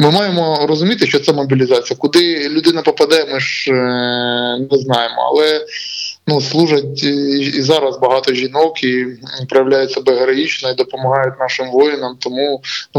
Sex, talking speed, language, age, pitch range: male, 140 wpm, Ukrainian, 20-39, 130-155 Hz